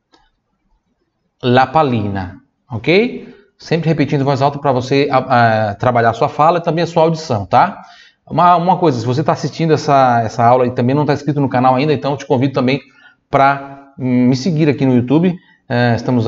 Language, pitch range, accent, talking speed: Italian, 120-150 Hz, Brazilian, 190 wpm